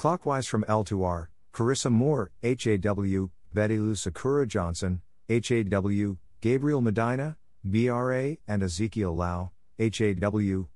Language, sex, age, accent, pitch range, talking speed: English, male, 50-69, American, 90-120 Hz, 105 wpm